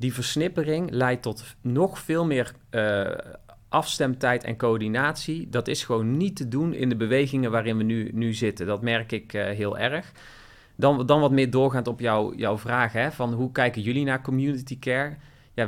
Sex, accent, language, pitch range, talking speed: male, Dutch, Dutch, 105-135 Hz, 190 wpm